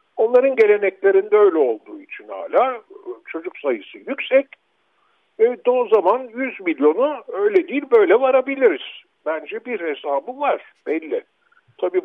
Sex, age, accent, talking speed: male, 60-79, native, 120 wpm